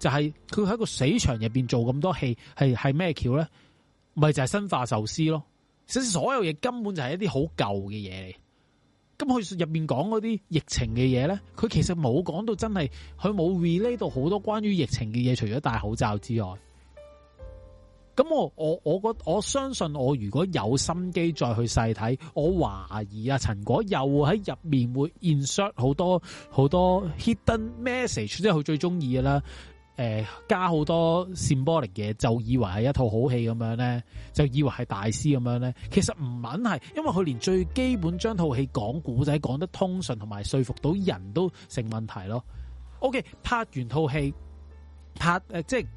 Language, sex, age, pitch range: Chinese, male, 30-49, 120-175 Hz